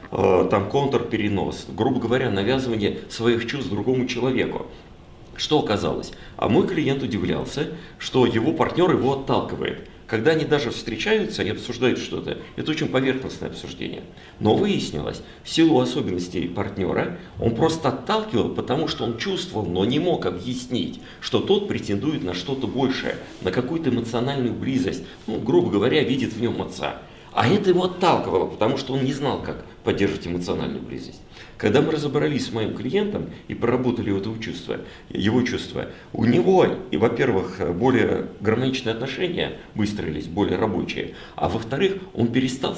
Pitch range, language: 105-135 Hz, Russian